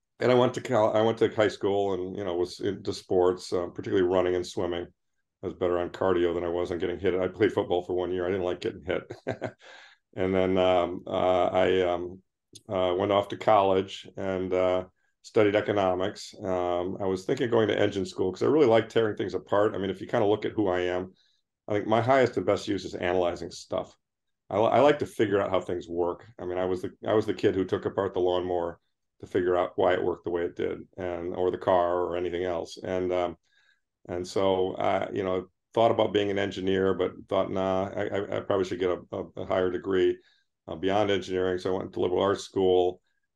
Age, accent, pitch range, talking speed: 50-69, American, 90-100 Hz, 235 wpm